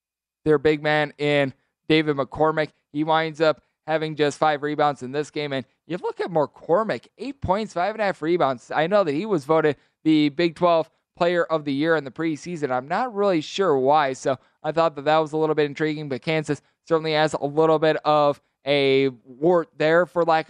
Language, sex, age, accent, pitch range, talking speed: English, male, 20-39, American, 150-180 Hz, 215 wpm